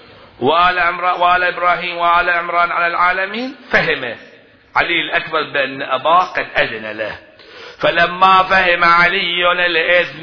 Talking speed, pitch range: 105 wpm, 165-180 Hz